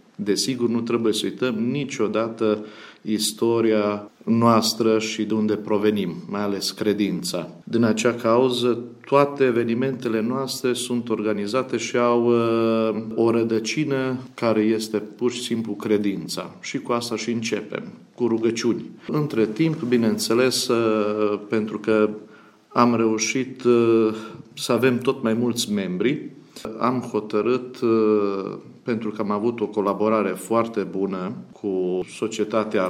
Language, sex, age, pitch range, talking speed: Romanian, male, 50-69, 105-120 Hz, 120 wpm